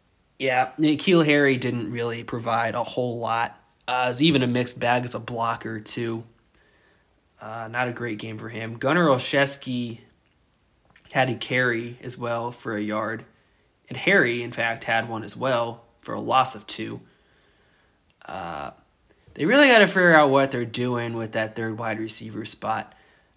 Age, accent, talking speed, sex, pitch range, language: 20-39, American, 165 wpm, male, 115-130 Hz, English